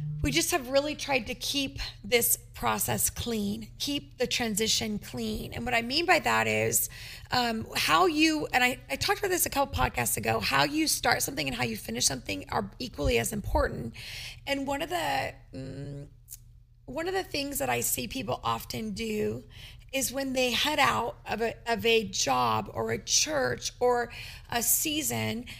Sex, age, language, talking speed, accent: female, 30-49, English, 185 wpm, American